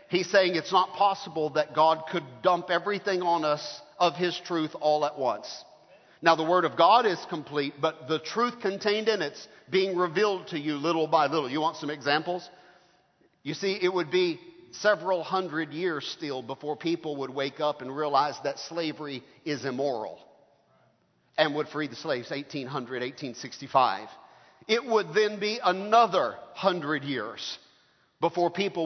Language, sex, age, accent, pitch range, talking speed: English, male, 50-69, American, 150-190 Hz, 160 wpm